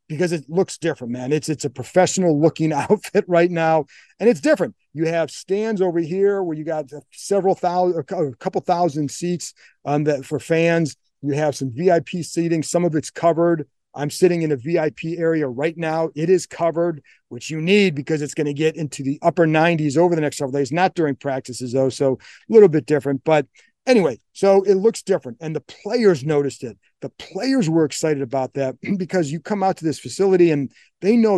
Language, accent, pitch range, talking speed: English, American, 145-175 Hz, 205 wpm